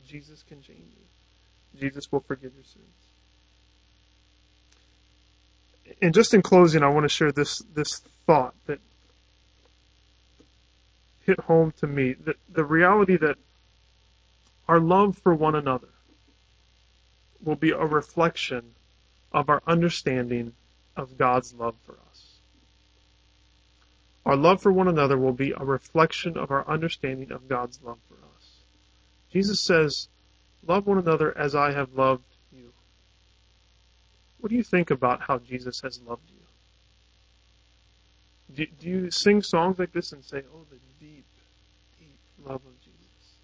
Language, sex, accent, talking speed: English, male, American, 135 wpm